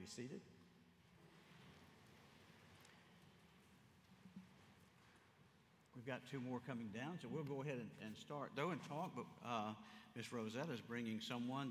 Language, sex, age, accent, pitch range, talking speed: English, male, 60-79, American, 105-140 Hz, 130 wpm